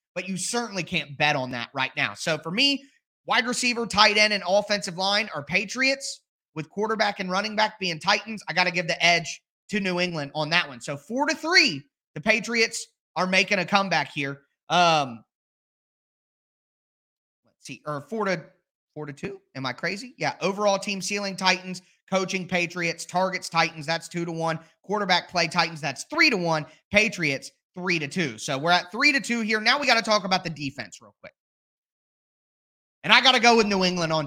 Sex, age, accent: male, 30-49, American